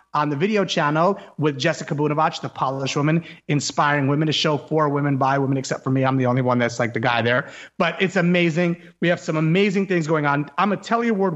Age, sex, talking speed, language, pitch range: 30-49, male, 230 wpm, English, 150-190 Hz